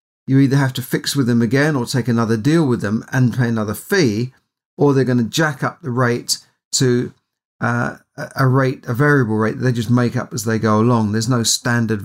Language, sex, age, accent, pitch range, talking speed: English, male, 40-59, British, 110-130 Hz, 225 wpm